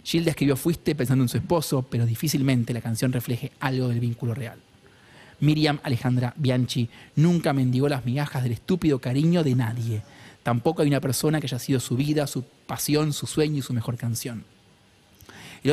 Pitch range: 125-155 Hz